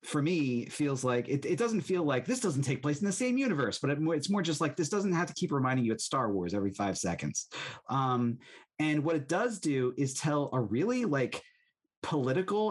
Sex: male